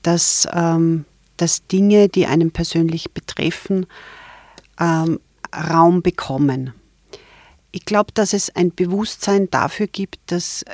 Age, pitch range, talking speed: 40-59, 160-190 Hz, 110 wpm